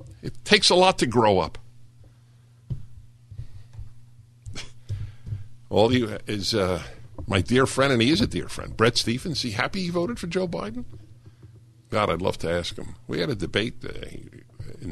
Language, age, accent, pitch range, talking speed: English, 50-69, American, 110-120 Hz, 170 wpm